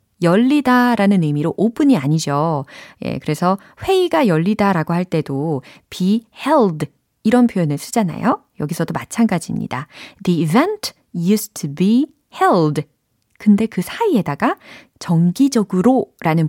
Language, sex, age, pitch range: Korean, female, 30-49, 155-245 Hz